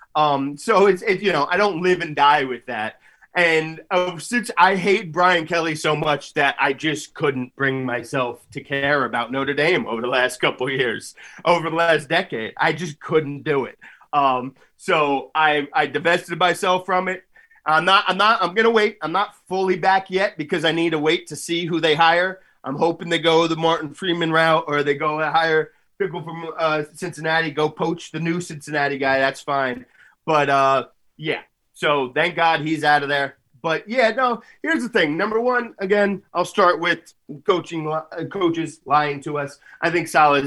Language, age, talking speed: English, 30-49, 200 wpm